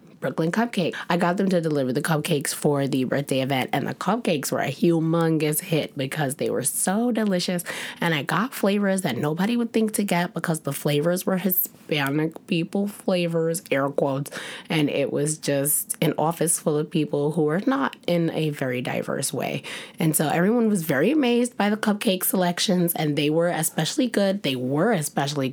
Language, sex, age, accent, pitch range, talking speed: English, female, 20-39, American, 150-195 Hz, 185 wpm